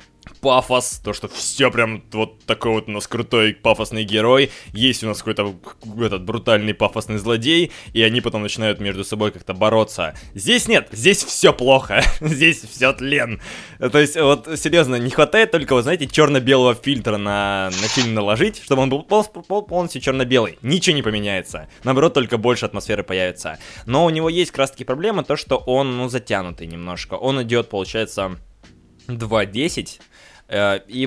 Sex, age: male, 20-39